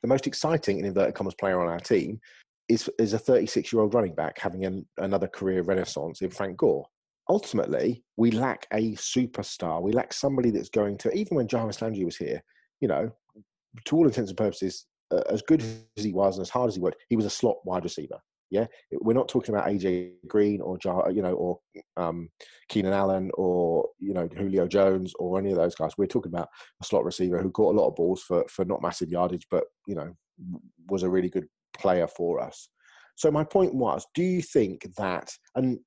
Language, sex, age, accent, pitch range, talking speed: English, male, 30-49, British, 95-125 Hz, 210 wpm